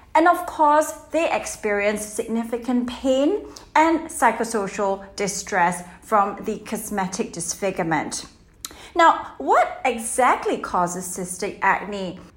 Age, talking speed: 30-49, 95 wpm